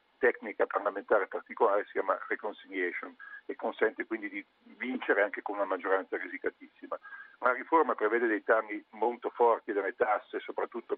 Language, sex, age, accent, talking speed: Italian, male, 50-69, native, 140 wpm